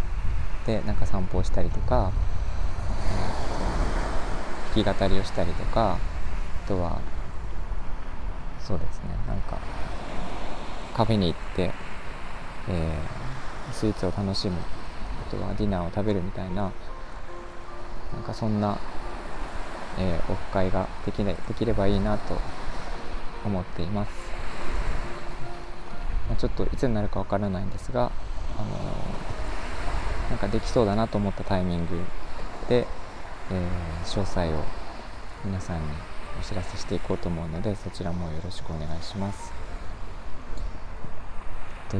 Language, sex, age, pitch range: Japanese, male, 20-39, 85-100 Hz